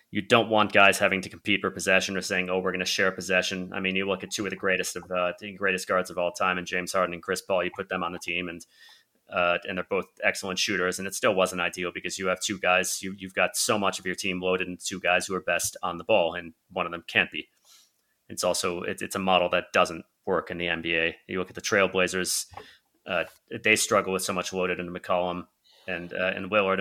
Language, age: English, 30-49